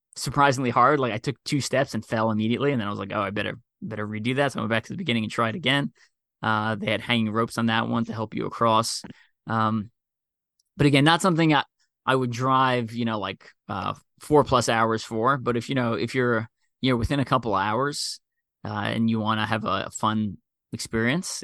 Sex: male